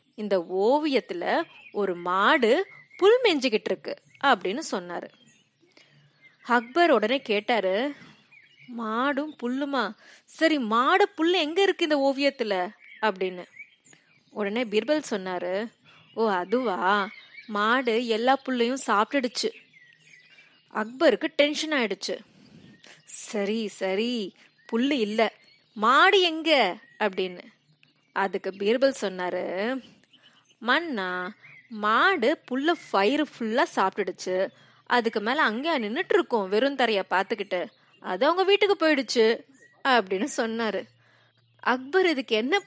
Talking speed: 90 wpm